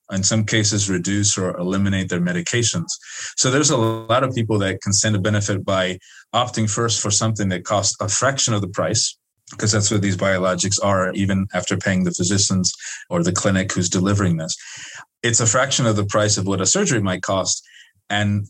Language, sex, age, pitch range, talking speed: English, male, 30-49, 95-115 Hz, 200 wpm